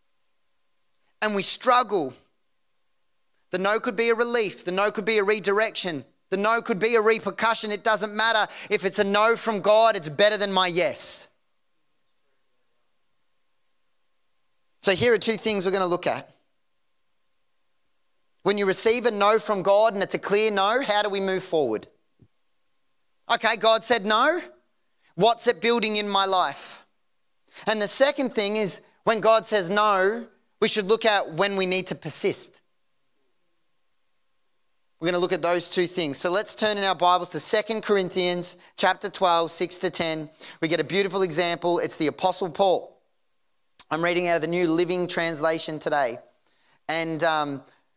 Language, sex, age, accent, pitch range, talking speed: English, male, 30-49, Australian, 180-220 Hz, 165 wpm